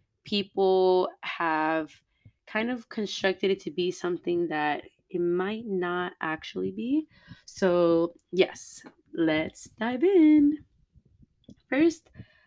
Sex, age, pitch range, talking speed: female, 20-39, 155-195 Hz, 100 wpm